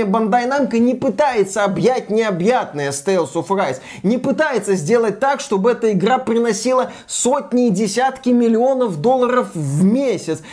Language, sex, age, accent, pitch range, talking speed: Russian, male, 20-39, native, 195-265 Hz, 140 wpm